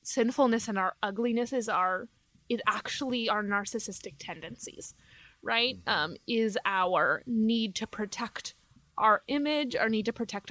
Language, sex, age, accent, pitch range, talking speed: English, female, 20-39, American, 210-250 Hz, 135 wpm